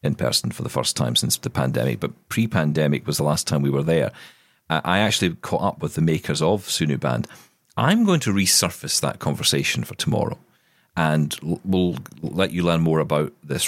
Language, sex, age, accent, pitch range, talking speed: English, male, 40-59, British, 80-105 Hz, 195 wpm